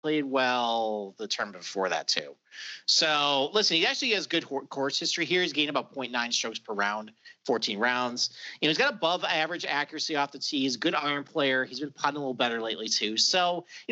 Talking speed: 210 wpm